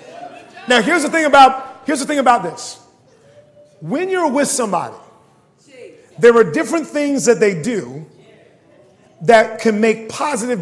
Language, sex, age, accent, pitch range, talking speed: English, male, 40-59, American, 200-265 Hz, 140 wpm